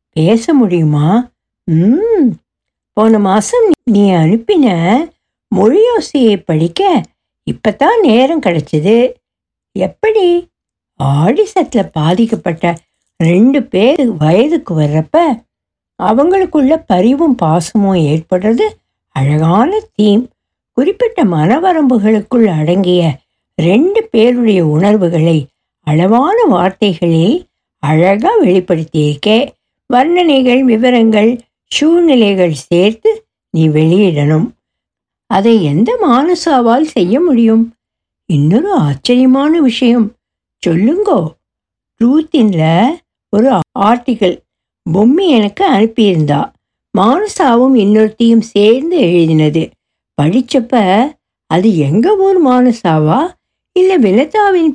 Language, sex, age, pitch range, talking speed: Tamil, female, 60-79, 175-280 Hz, 75 wpm